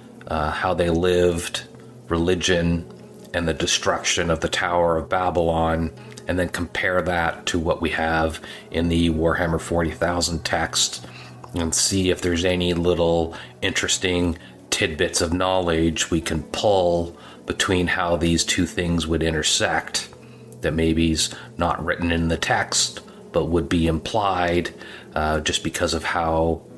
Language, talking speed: English, 140 wpm